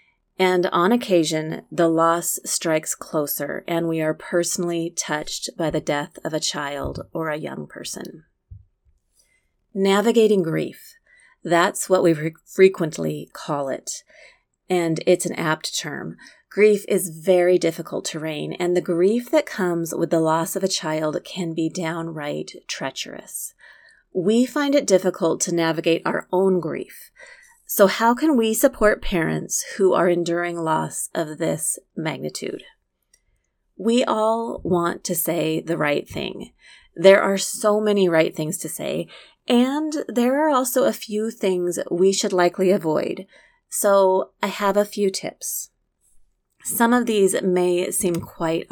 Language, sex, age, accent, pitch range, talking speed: English, female, 30-49, American, 165-210 Hz, 145 wpm